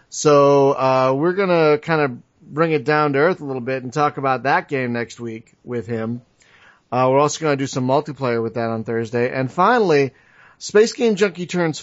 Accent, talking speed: American, 215 wpm